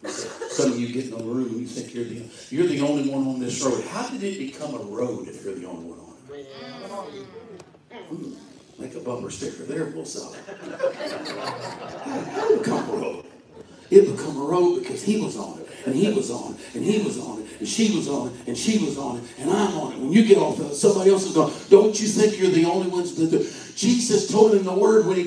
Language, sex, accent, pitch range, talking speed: English, male, American, 190-250 Hz, 260 wpm